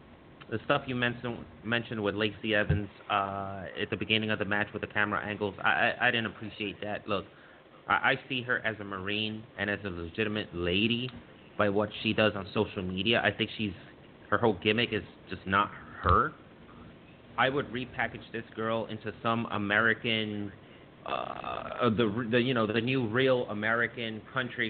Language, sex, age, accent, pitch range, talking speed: English, male, 30-49, American, 100-120 Hz, 175 wpm